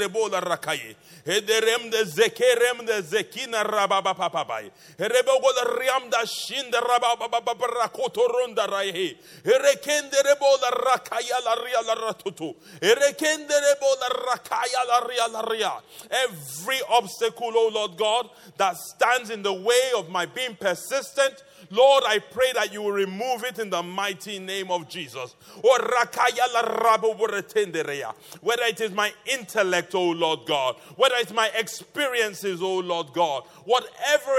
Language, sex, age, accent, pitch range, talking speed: English, male, 30-49, Nigerian, 205-255 Hz, 130 wpm